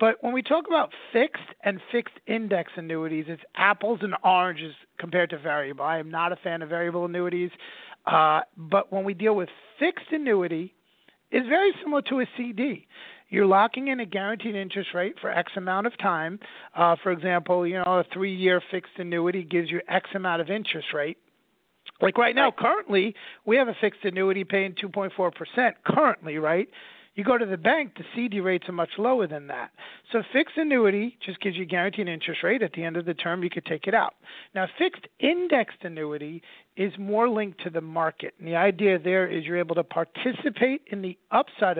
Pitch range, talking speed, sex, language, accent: 170-220 Hz, 195 wpm, male, English, American